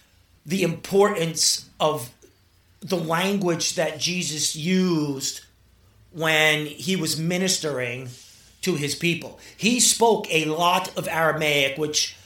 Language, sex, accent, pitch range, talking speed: English, male, American, 140-185 Hz, 110 wpm